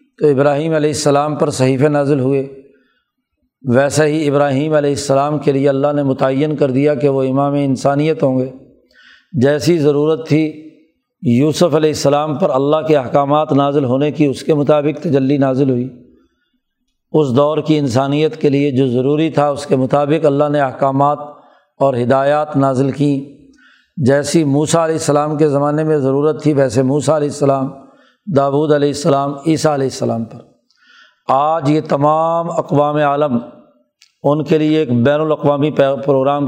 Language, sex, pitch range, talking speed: Urdu, male, 140-155 Hz, 160 wpm